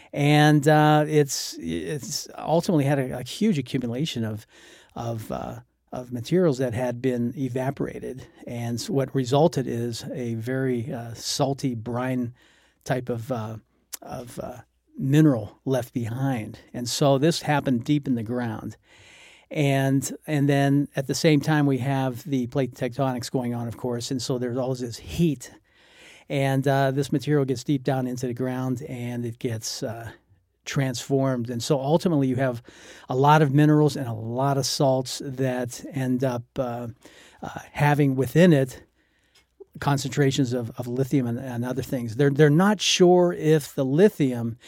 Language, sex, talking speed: English, male, 160 wpm